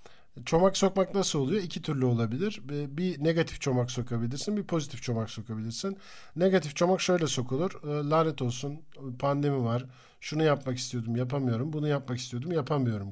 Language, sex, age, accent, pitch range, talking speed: Turkish, male, 50-69, native, 125-175 Hz, 145 wpm